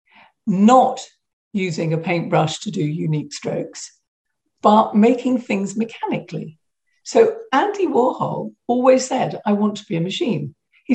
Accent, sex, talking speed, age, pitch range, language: British, female, 130 wpm, 50-69, 160-235 Hz, English